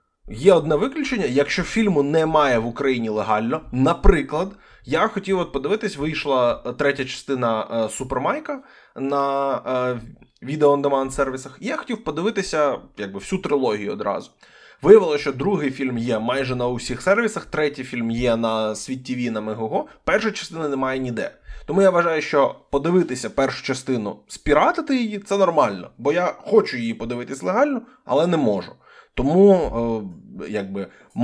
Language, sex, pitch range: Ukrainian, male, 120-200 Hz